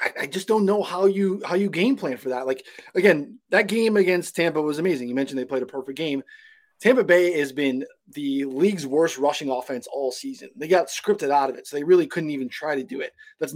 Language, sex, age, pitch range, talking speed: English, male, 20-39, 135-195 Hz, 240 wpm